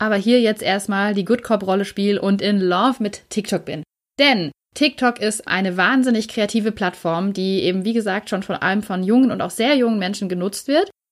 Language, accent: German, German